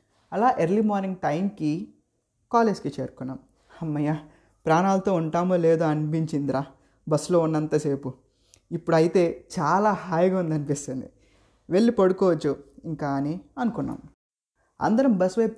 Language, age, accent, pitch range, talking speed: Telugu, 20-39, native, 145-200 Hz, 100 wpm